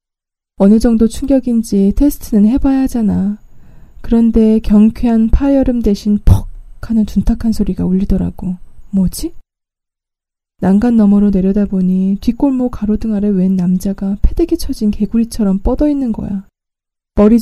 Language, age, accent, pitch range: Korean, 20-39, native, 190-230 Hz